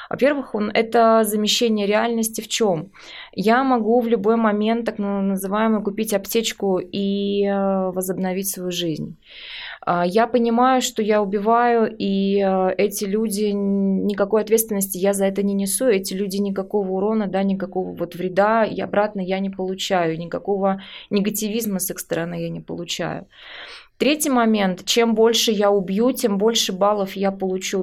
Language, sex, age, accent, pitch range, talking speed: Russian, female, 20-39, native, 190-225 Hz, 140 wpm